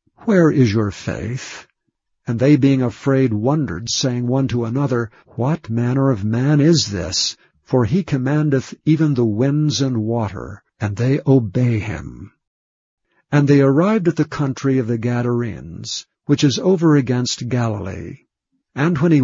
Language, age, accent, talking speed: English, 60-79, American, 150 wpm